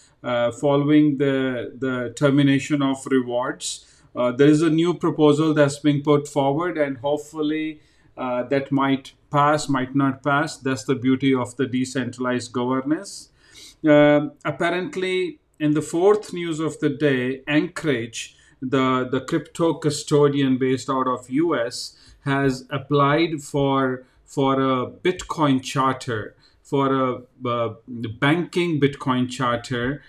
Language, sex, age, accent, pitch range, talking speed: English, male, 40-59, Indian, 130-150 Hz, 130 wpm